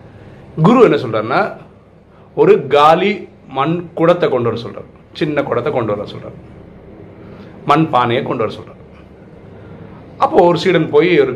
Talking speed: 120 wpm